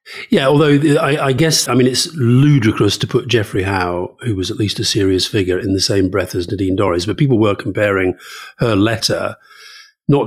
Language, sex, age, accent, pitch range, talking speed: English, male, 40-59, British, 100-140 Hz, 200 wpm